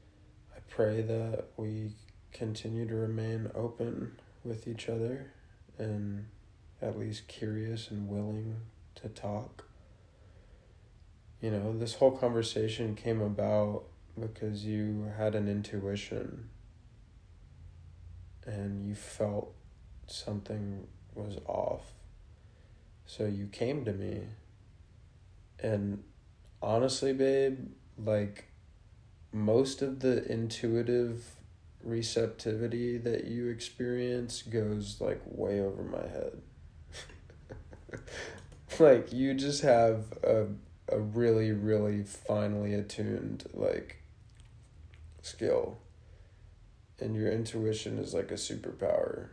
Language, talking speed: English, 95 wpm